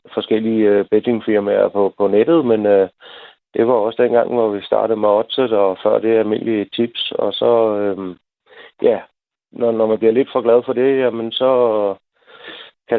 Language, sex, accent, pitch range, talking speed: Danish, male, native, 110-125 Hz, 170 wpm